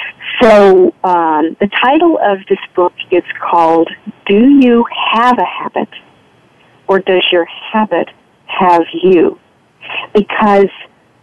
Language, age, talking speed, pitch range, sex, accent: English, 50-69, 110 wpm, 180-240 Hz, female, American